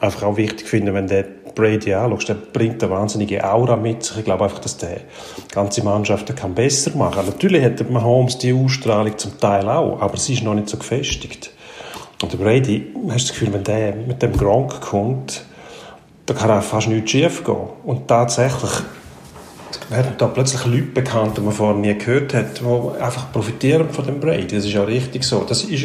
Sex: male